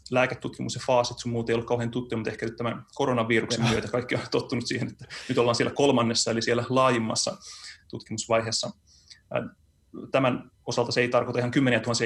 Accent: native